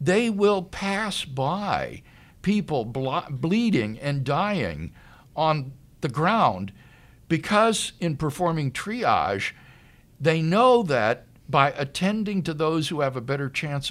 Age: 60-79